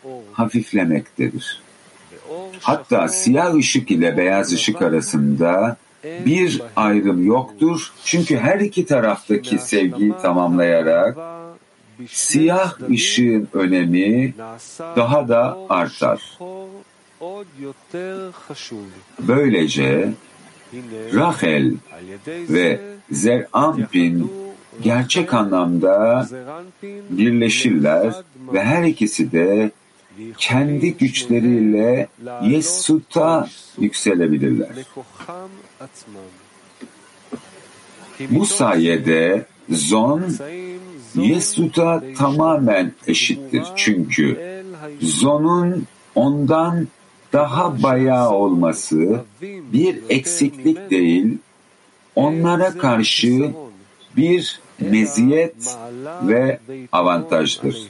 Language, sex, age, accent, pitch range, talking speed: Turkish, male, 50-69, native, 105-170 Hz, 60 wpm